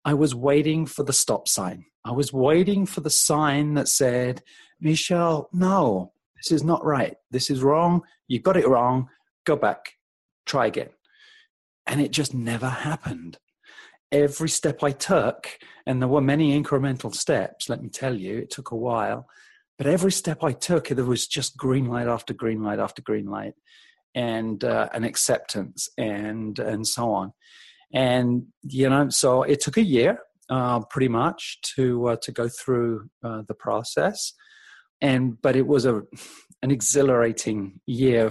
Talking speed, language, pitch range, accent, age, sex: 165 wpm, English, 115-145 Hz, British, 40-59, male